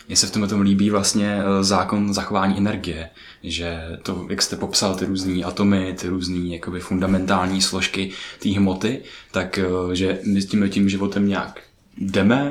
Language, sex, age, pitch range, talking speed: Czech, male, 20-39, 95-105 Hz, 160 wpm